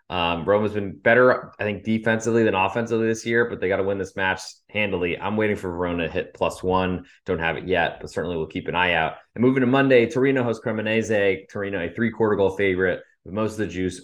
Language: English